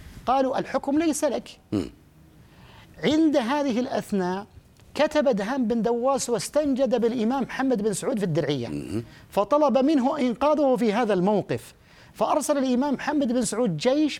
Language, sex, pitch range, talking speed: Arabic, male, 210-285 Hz, 125 wpm